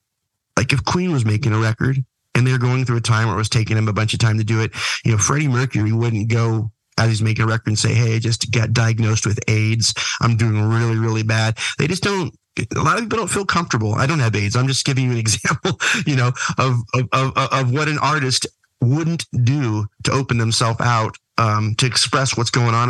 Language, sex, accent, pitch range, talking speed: English, male, American, 110-130 Hz, 240 wpm